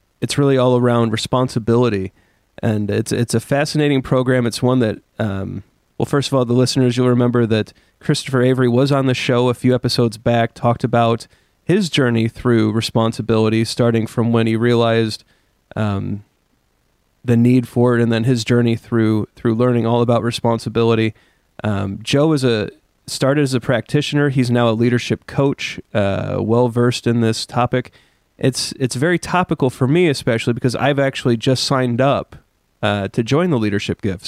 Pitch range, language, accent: 115-130 Hz, English, American